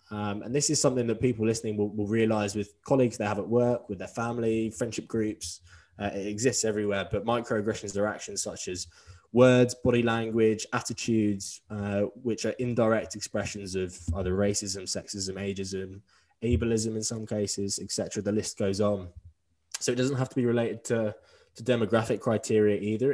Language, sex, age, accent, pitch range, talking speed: English, male, 10-29, British, 95-110 Hz, 175 wpm